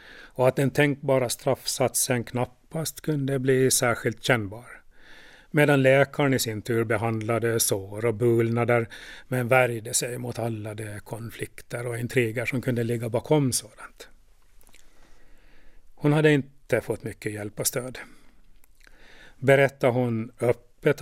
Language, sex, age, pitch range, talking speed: Swedish, male, 40-59, 115-135 Hz, 125 wpm